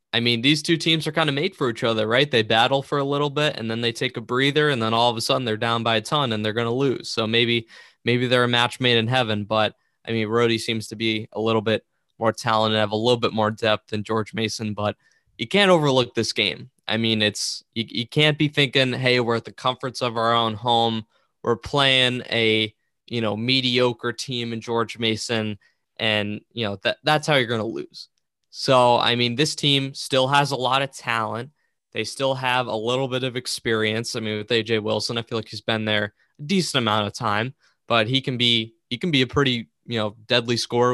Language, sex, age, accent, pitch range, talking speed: English, male, 20-39, American, 110-125 Hz, 235 wpm